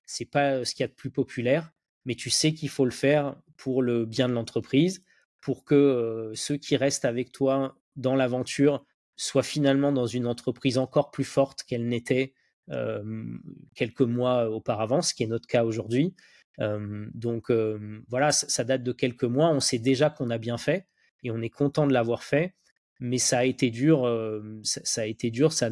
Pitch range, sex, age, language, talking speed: 115-140 Hz, male, 20-39, French, 190 wpm